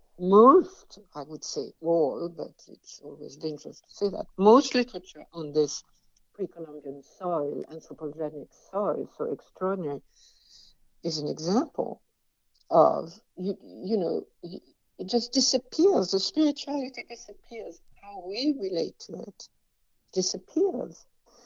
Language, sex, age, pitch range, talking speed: English, female, 60-79, 170-240 Hz, 115 wpm